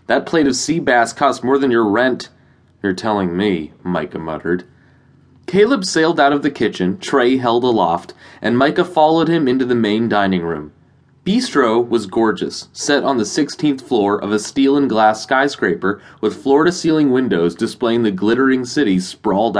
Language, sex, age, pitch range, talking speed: English, male, 20-39, 105-145 Hz, 170 wpm